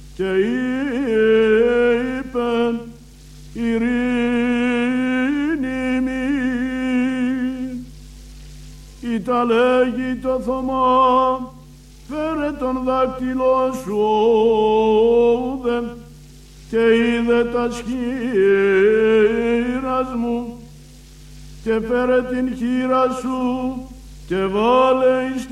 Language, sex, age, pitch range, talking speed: Greek, male, 60-79, 230-255 Hz, 55 wpm